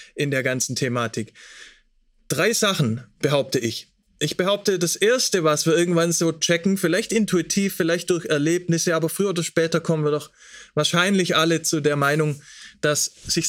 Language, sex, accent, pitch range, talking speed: German, male, German, 140-175 Hz, 160 wpm